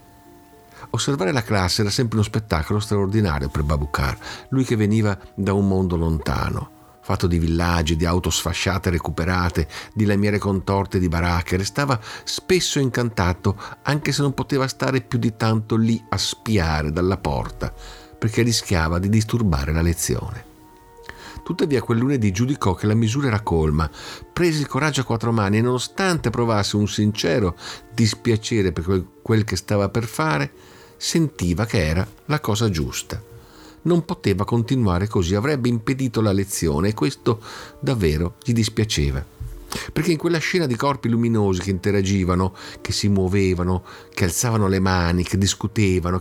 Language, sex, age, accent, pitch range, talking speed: Italian, male, 50-69, native, 90-115 Hz, 150 wpm